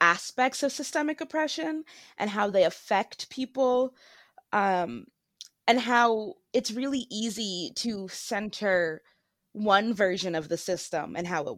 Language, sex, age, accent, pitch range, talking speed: English, female, 20-39, American, 185-240 Hz, 130 wpm